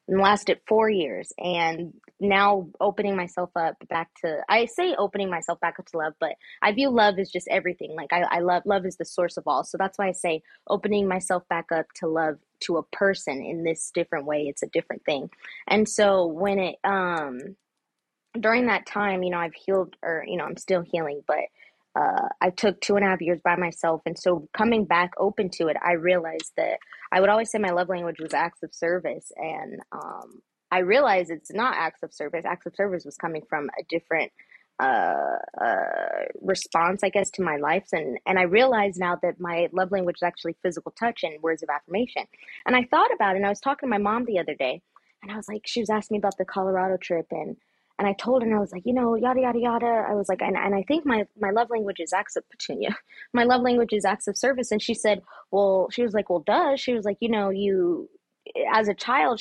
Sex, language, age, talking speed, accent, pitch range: female, English, 20-39, 230 wpm, American, 175-220 Hz